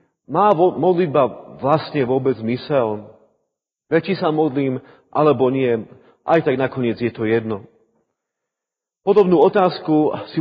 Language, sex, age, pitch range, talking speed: Slovak, male, 40-59, 135-170 Hz, 115 wpm